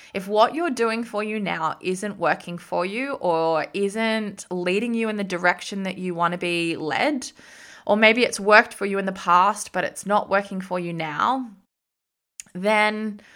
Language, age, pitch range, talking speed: English, 20-39, 180-225 Hz, 185 wpm